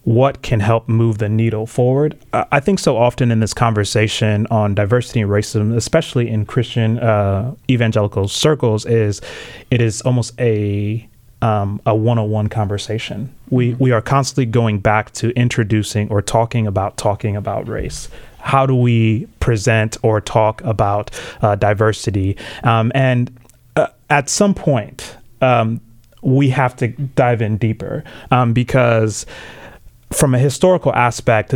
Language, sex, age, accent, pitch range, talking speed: English, male, 30-49, American, 110-125 Hz, 145 wpm